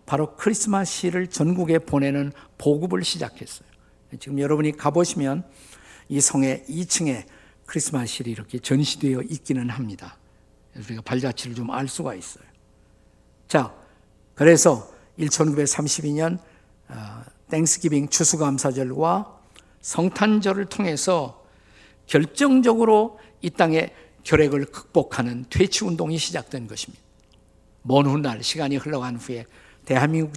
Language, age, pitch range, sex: Korean, 50-69, 125-175 Hz, male